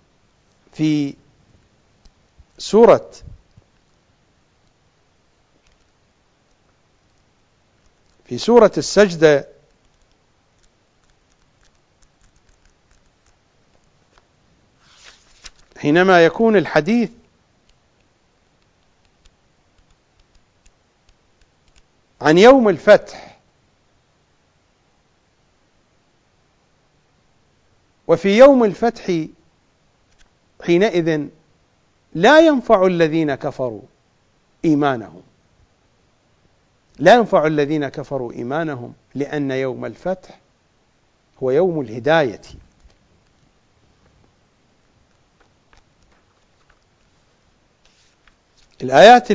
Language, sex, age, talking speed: English, male, 50-69, 40 wpm